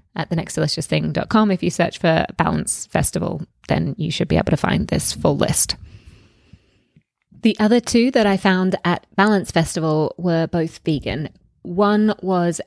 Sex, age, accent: female, 20-39, British